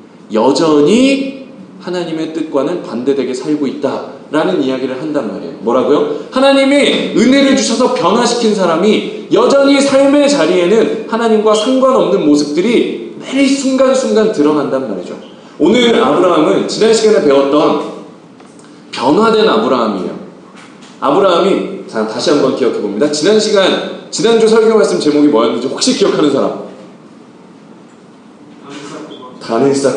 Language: English